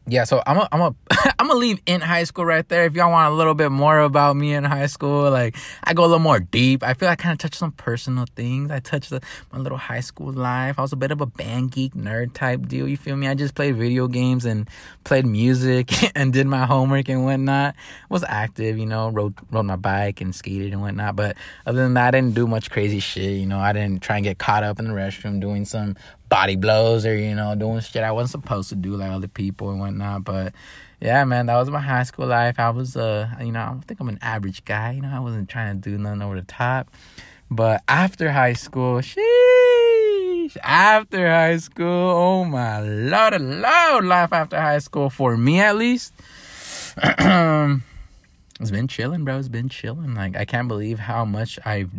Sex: male